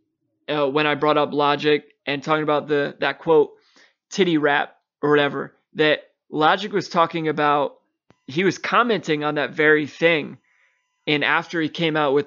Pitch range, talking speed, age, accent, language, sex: 150-190 Hz, 165 wpm, 20-39, American, English, male